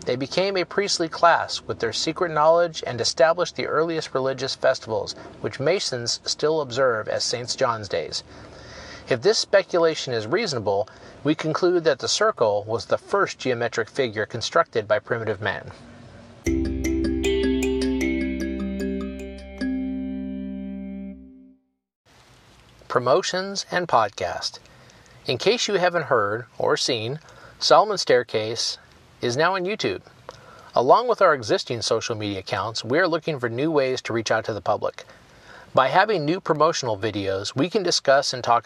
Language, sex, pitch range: English, male, 105-160 Hz